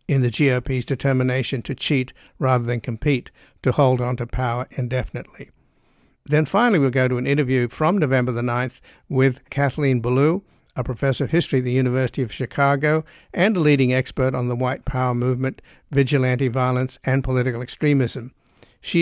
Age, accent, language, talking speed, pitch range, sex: 60-79, American, English, 165 wpm, 125-140 Hz, male